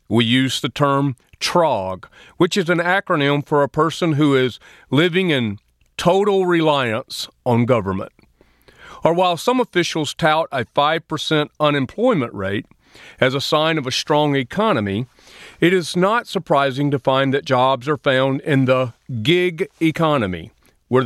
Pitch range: 125-160 Hz